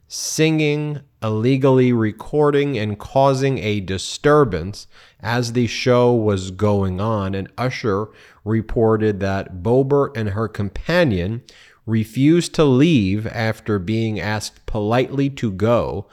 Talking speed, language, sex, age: 110 wpm, English, male, 30-49